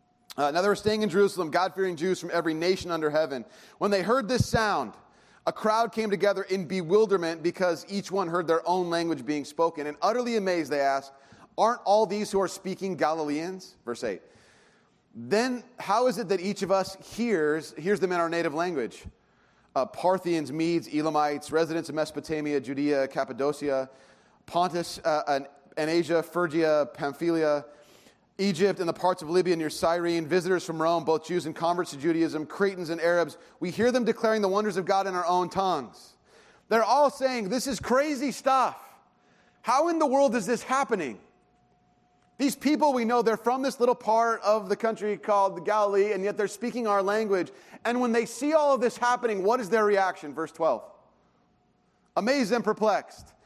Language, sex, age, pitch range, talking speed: English, male, 30-49, 165-215 Hz, 180 wpm